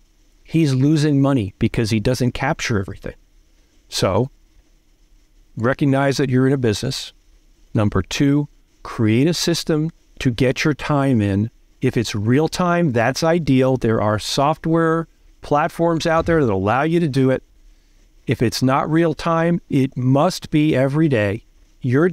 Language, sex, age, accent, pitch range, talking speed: English, male, 40-59, American, 115-155 Hz, 145 wpm